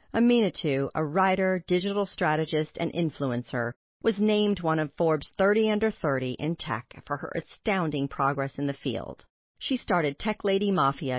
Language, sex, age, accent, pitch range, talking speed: English, female, 40-59, American, 145-190 Hz, 155 wpm